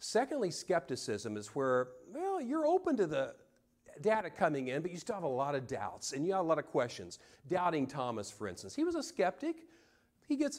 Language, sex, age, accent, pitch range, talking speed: English, male, 40-59, American, 110-170 Hz, 210 wpm